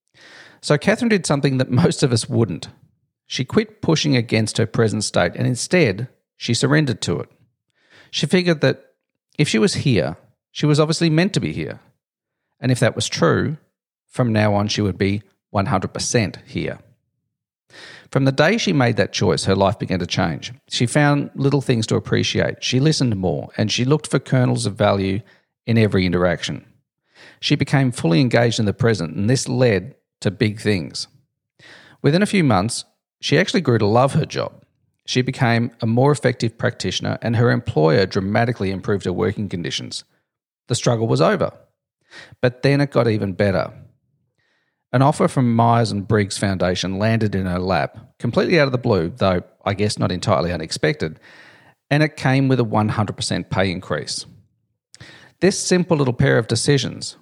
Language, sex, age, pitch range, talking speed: English, male, 50-69, 105-140 Hz, 170 wpm